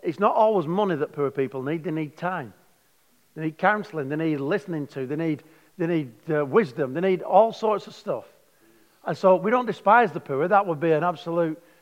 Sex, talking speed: male, 215 wpm